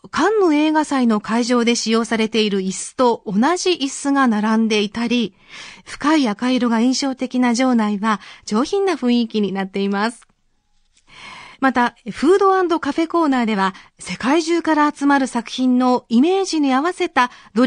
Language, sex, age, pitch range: Japanese, female, 40-59, 215-305 Hz